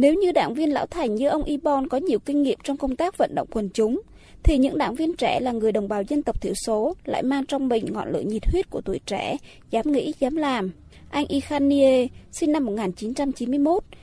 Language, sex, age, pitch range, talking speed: Vietnamese, female, 20-39, 245-300 Hz, 225 wpm